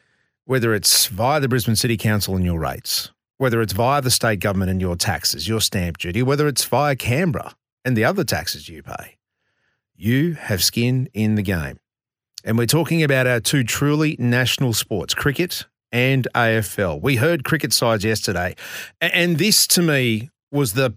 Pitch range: 105-140 Hz